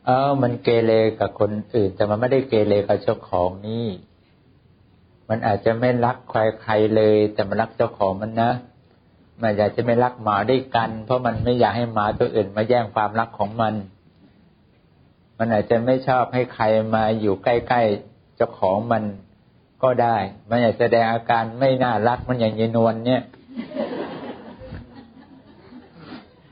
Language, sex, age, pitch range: English, male, 60-79, 105-125 Hz